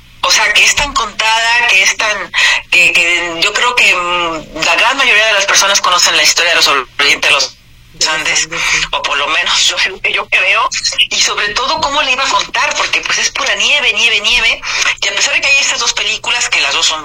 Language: Spanish